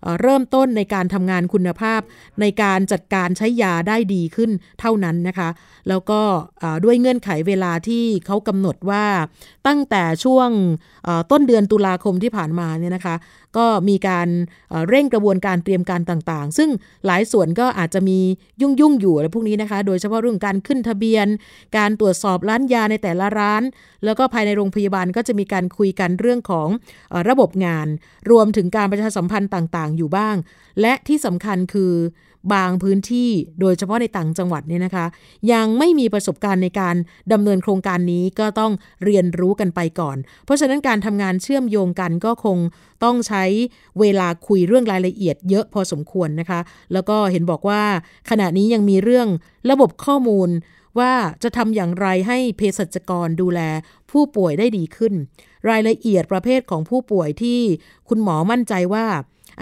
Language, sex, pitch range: Thai, female, 180-220 Hz